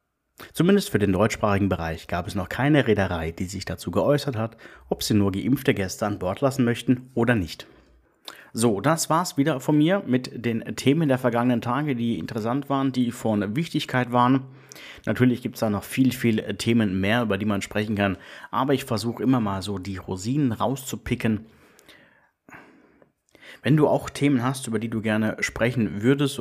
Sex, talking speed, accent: male, 180 wpm, German